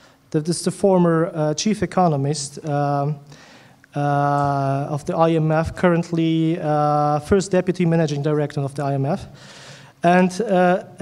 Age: 30-49